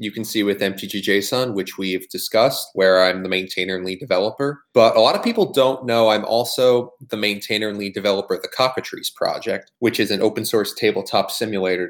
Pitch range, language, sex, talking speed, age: 100-120 Hz, English, male, 200 wpm, 30-49